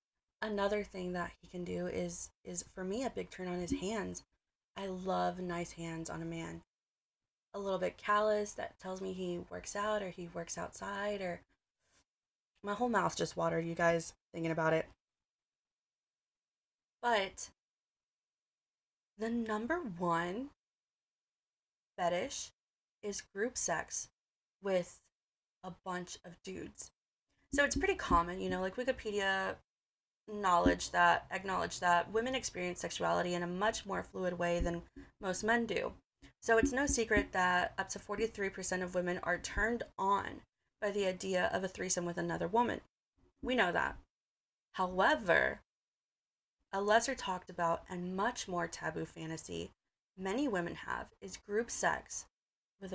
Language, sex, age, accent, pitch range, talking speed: English, female, 20-39, American, 175-210 Hz, 145 wpm